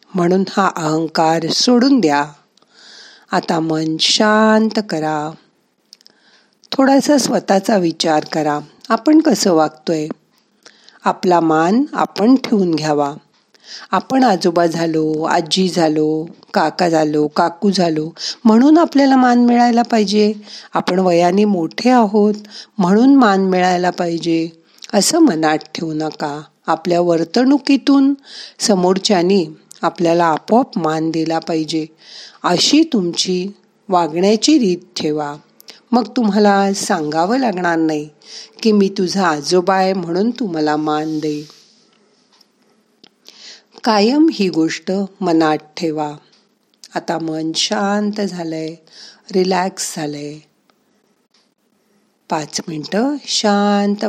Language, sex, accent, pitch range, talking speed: Marathi, female, native, 160-220 Hz, 90 wpm